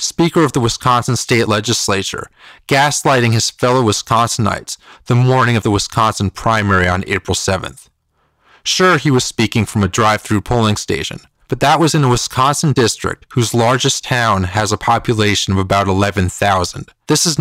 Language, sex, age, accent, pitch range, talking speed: English, male, 30-49, American, 105-140 Hz, 160 wpm